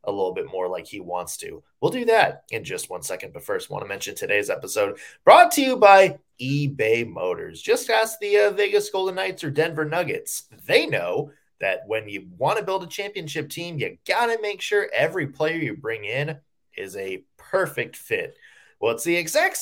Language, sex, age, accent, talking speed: English, male, 20-39, American, 200 wpm